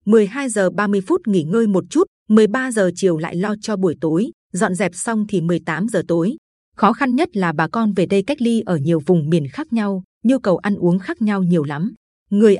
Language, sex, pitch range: Vietnamese, female, 180-225 Hz